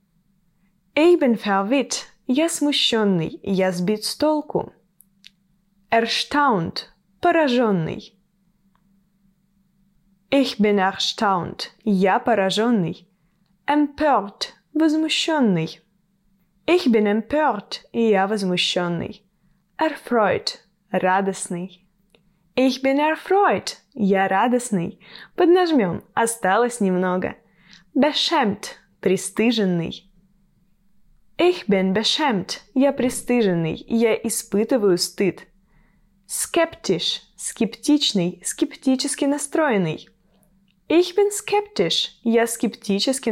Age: 10-29